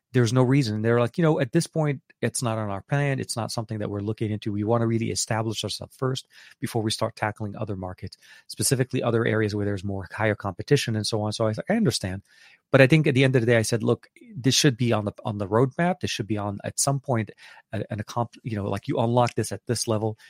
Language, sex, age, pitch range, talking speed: English, male, 30-49, 105-125 Hz, 270 wpm